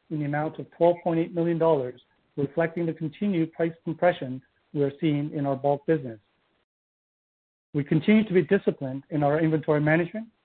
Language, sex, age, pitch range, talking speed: English, male, 50-69, 145-175 Hz, 155 wpm